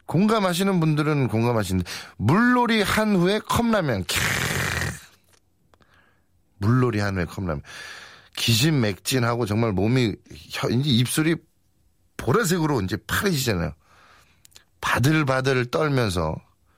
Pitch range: 100-160 Hz